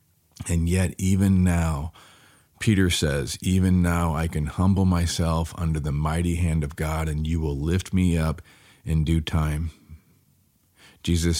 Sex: male